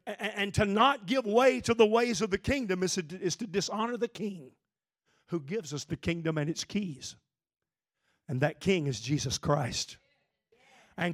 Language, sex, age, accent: English, male, 50-69, American